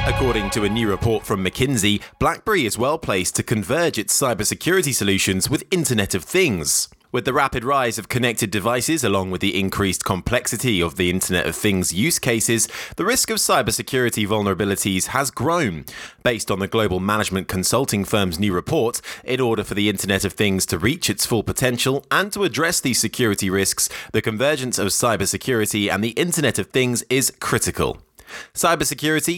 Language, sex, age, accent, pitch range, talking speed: English, male, 20-39, British, 100-130 Hz, 175 wpm